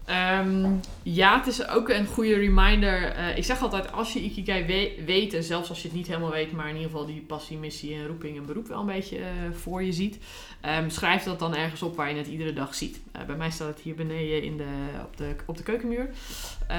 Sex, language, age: female, Dutch, 20-39